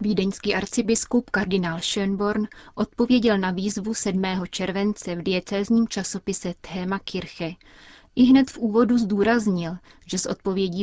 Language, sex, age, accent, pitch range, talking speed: Czech, female, 30-49, native, 175-210 Hz, 120 wpm